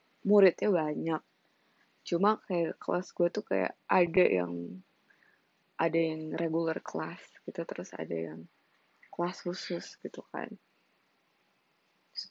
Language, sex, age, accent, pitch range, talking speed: Indonesian, female, 20-39, native, 165-205 Hz, 110 wpm